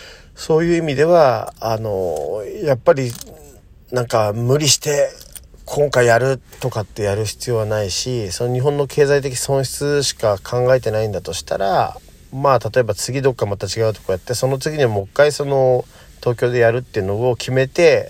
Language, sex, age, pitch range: Japanese, male, 40-59, 100-145 Hz